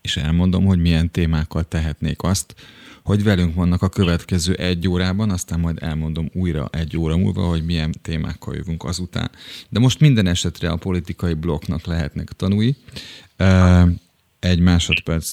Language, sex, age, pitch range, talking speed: Hungarian, male, 30-49, 85-95 Hz, 145 wpm